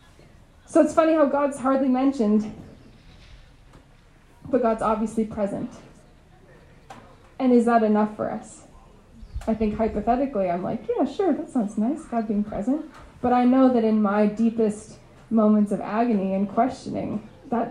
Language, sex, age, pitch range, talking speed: English, female, 20-39, 210-255 Hz, 145 wpm